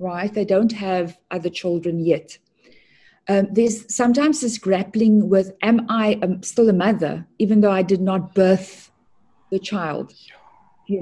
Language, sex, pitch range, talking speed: English, female, 180-220 Hz, 145 wpm